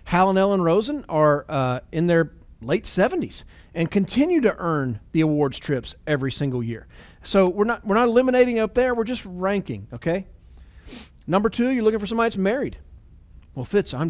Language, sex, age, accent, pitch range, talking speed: English, male, 40-59, American, 150-215 Hz, 180 wpm